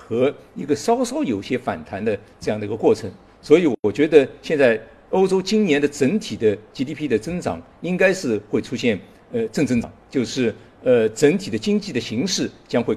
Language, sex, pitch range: Chinese, male, 150-230 Hz